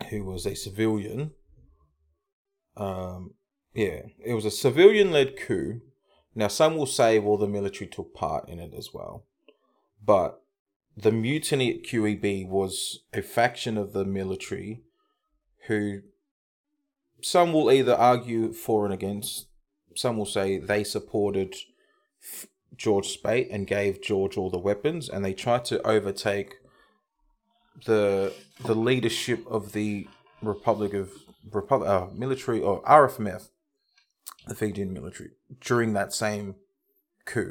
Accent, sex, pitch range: Australian, male, 100-155 Hz